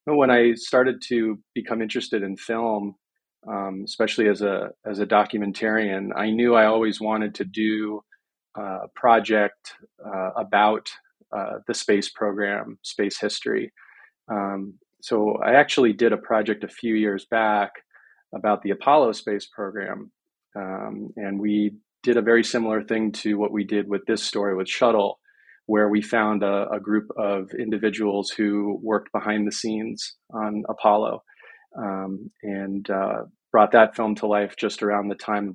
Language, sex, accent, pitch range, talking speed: English, male, American, 100-115 Hz, 155 wpm